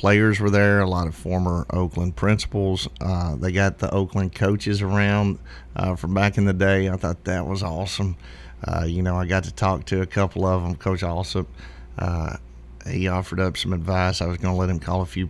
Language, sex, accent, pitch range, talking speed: English, male, American, 85-95 Hz, 220 wpm